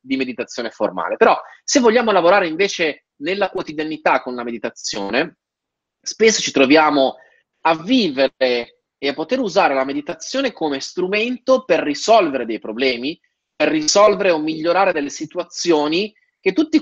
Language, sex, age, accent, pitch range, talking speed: Italian, male, 30-49, native, 150-225 Hz, 135 wpm